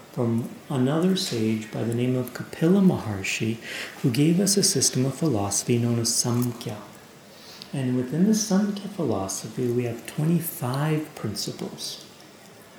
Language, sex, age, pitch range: English, male, 40-59, 115-155 Hz